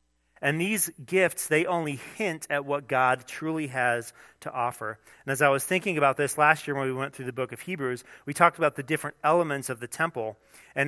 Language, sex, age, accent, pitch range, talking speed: English, male, 40-59, American, 120-160 Hz, 220 wpm